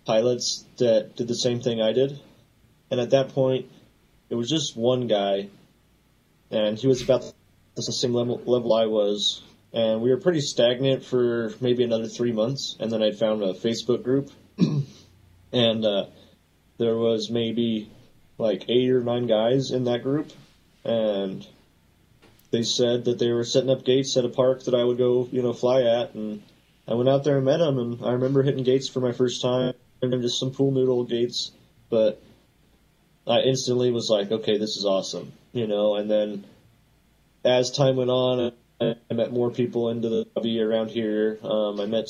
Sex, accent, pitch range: male, American, 110-125 Hz